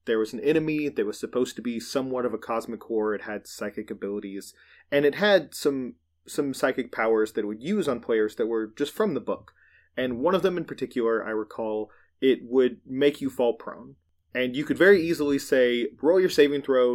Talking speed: 215 wpm